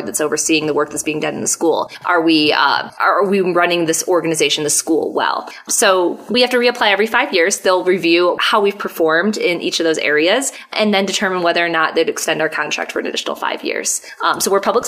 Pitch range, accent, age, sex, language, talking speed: 155-200 Hz, American, 20-39, female, English, 235 wpm